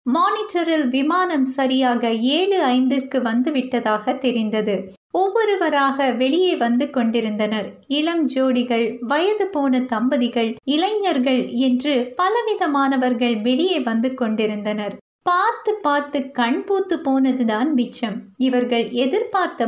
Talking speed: 90 wpm